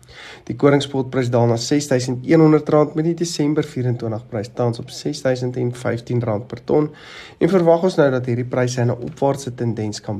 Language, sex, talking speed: English, male, 170 wpm